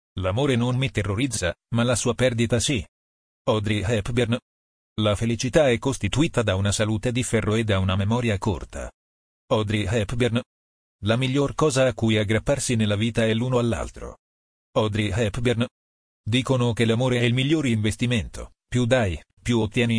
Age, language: 40-59, Italian